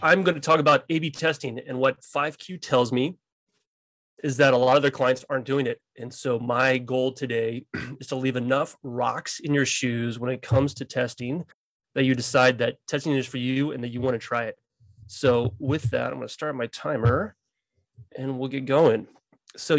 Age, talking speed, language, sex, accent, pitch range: 30-49, 210 wpm, English, male, American, 130-155 Hz